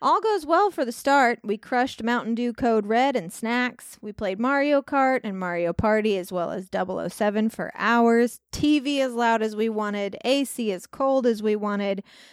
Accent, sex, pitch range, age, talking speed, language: American, female, 205-255 Hz, 20-39, 190 wpm, English